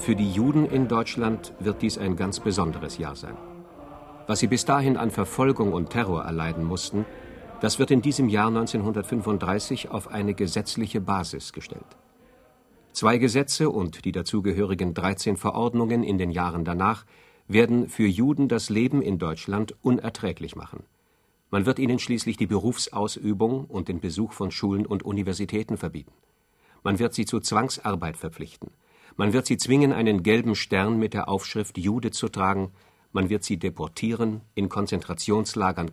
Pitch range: 95-120 Hz